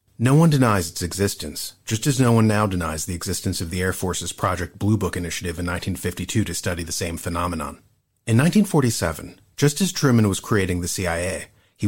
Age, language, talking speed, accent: 30-49, English, 190 wpm, American